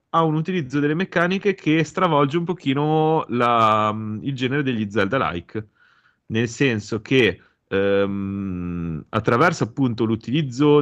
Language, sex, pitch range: Italian, male, 95-140 Hz